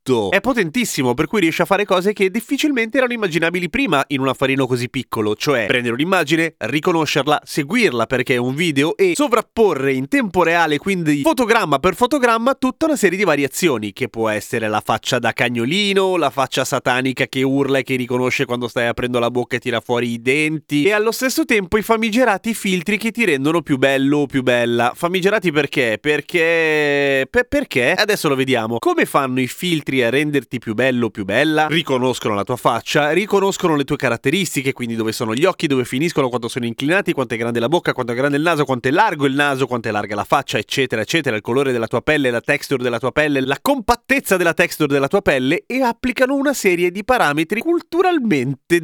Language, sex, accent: Italian, male, native